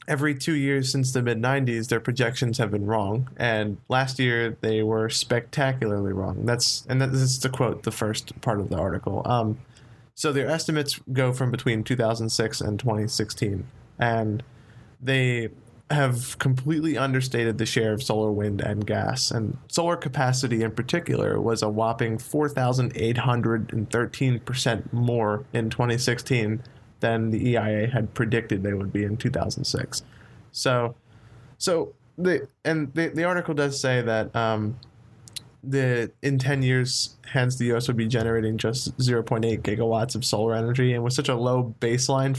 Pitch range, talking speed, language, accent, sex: 110-130 Hz, 155 wpm, English, American, male